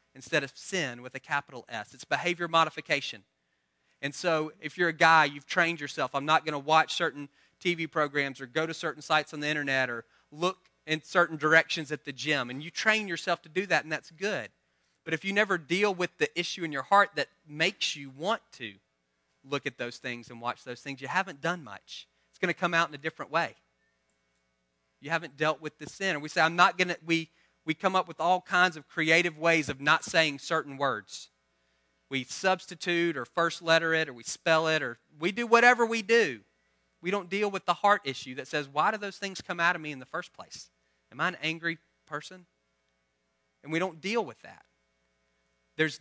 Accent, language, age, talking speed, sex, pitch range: American, English, 30-49, 220 wpm, male, 130-170 Hz